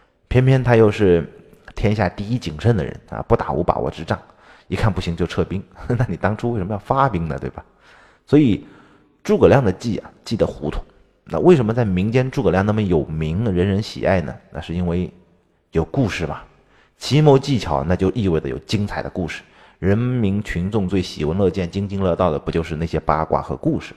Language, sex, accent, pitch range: Chinese, male, native, 85-120 Hz